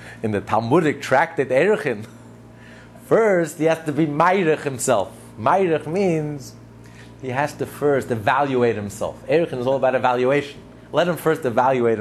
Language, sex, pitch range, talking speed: English, male, 120-160 Hz, 150 wpm